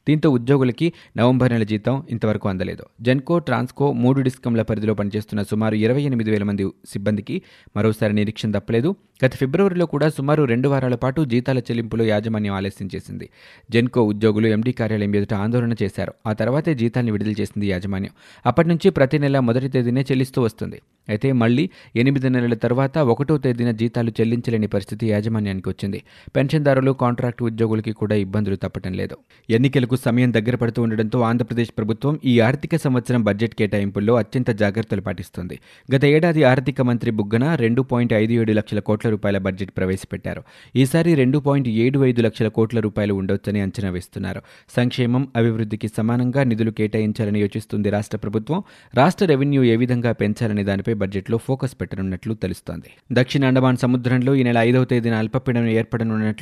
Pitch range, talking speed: 105-130 Hz, 135 wpm